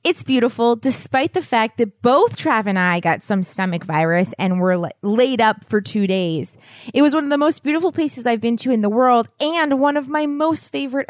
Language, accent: English, American